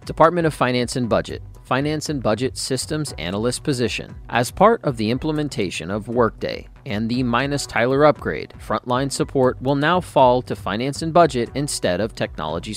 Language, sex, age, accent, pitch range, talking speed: English, male, 40-59, American, 110-145 Hz, 170 wpm